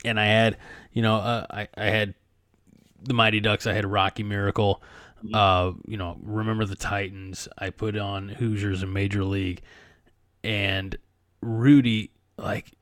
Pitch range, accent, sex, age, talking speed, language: 100-115 Hz, American, male, 20-39, 150 wpm, English